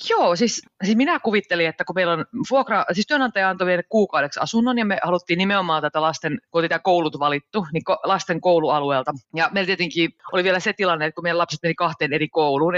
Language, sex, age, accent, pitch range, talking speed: Finnish, female, 30-49, native, 155-195 Hz, 205 wpm